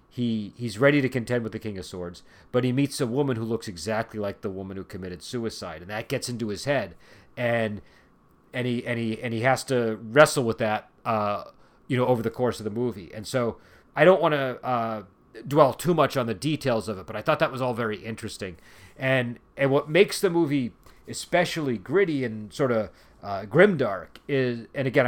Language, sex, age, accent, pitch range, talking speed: English, male, 40-59, American, 105-130 Hz, 215 wpm